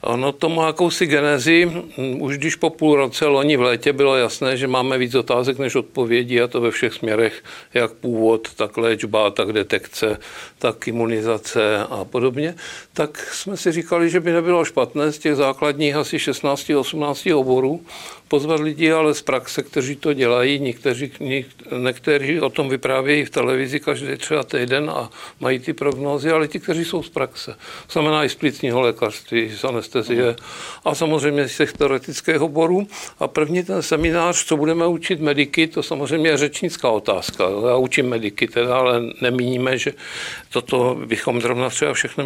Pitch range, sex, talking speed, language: 130-165 Hz, male, 160 wpm, Czech